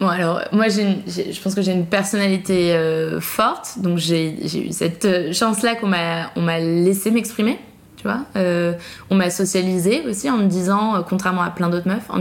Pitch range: 175-215 Hz